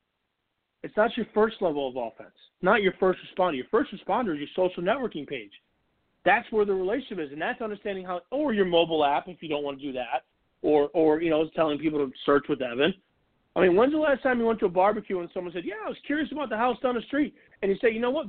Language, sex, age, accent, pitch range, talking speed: English, male, 40-59, American, 155-240 Hz, 265 wpm